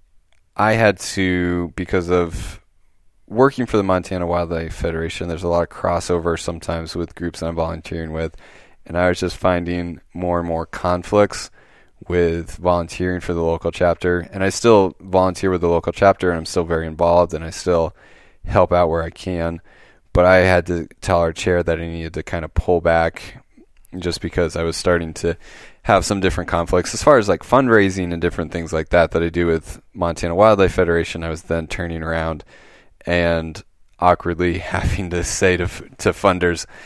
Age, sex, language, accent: 20-39, male, English, American